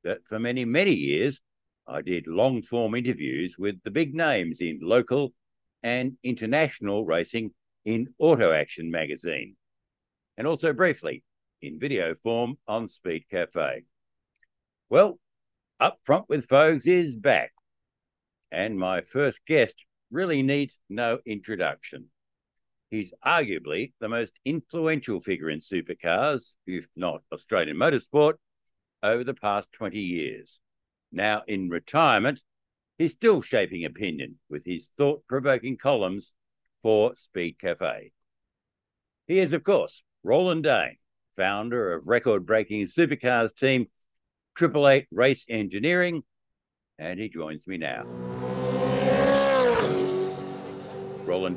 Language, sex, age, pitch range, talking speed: English, male, 60-79, 100-140 Hz, 115 wpm